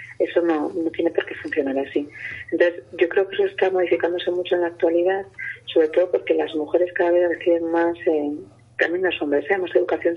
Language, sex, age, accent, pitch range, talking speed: Spanish, female, 30-49, Spanish, 160-185 Hz, 205 wpm